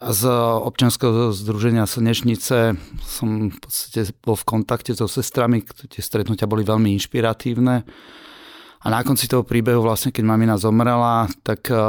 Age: 30-49